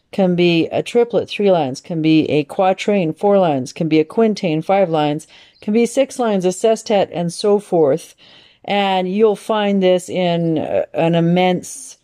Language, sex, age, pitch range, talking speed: English, female, 40-59, 155-180 Hz, 170 wpm